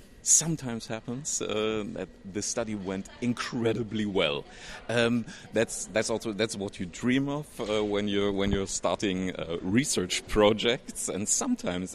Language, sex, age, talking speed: English, male, 40-59, 145 wpm